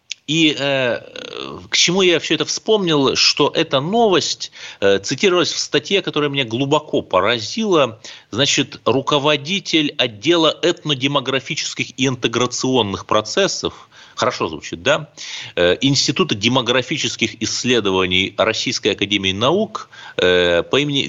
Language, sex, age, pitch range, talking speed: Russian, male, 30-49, 110-155 Hz, 110 wpm